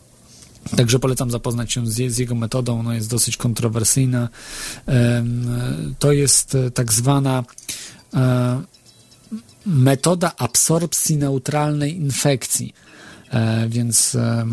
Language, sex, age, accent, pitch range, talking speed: Polish, male, 40-59, native, 120-150 Hz, 85 wpm